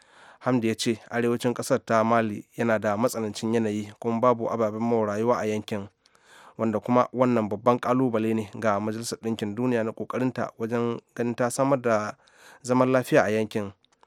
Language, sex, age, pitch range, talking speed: English, male, 30-49, 110-125 Hz, 150 wpm